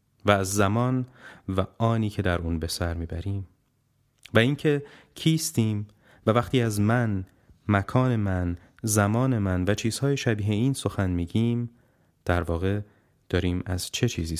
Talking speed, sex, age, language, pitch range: 140 wpm, male, 30-49, Persian, 95-120 Hz